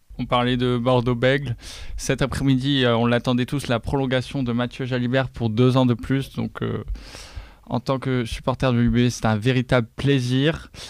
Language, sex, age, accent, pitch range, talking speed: French, male, 20-39, French, 120-135 Hz, 170 wpm